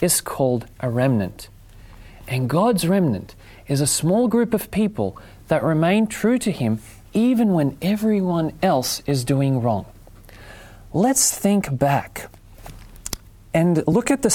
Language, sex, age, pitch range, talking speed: English, male, 30-49, 105-180 Hz, 135 wpm